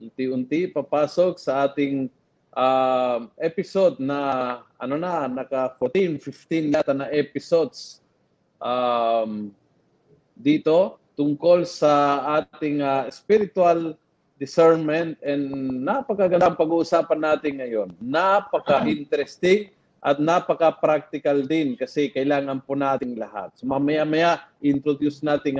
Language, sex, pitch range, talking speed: Filipino, male, 140-180 Hz, 95 wpm